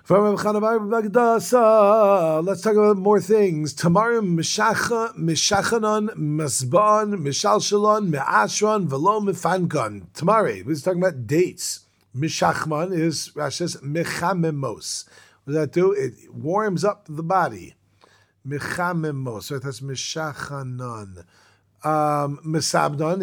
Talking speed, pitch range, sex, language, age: 105 wpm, 145-185 Hz, male, English, 40-59